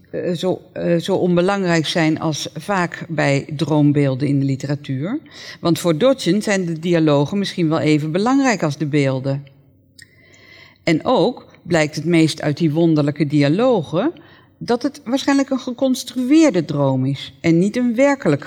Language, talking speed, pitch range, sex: Dutch, 150 wpm, 145-195 Hz, female